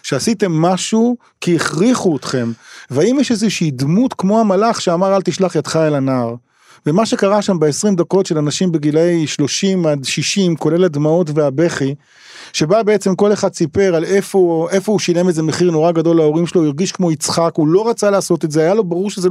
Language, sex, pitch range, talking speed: Hebrew, male, 165-230 Hz, 195 wpm